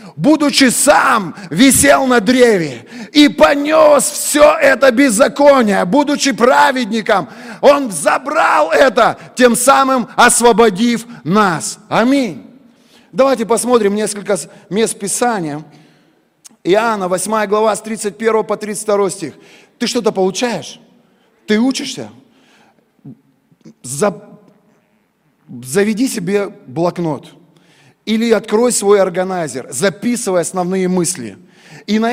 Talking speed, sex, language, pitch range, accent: 95 wpm, male, Russian, 195-245 Hz, native